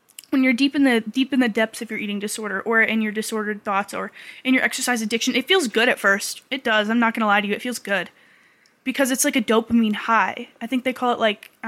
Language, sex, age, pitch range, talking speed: English, female, 10-29, 215-275 Hz, 270 wpm